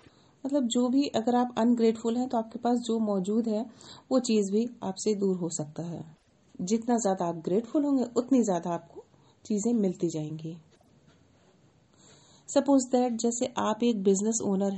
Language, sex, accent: Hindi, female, native